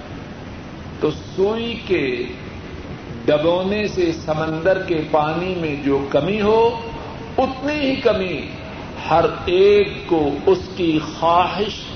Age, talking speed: 60-79, 105 wpm